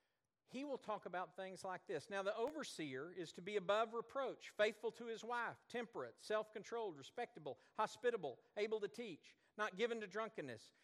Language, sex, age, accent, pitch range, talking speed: English, male, 50-69, American, 175-235 Hz, 165 wpm